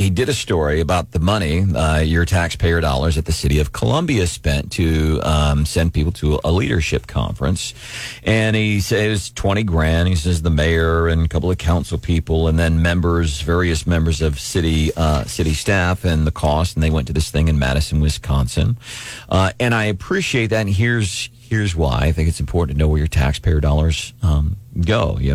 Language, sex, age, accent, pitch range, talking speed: English, male, 40-59, American, 80-105 Hz, 200 wpm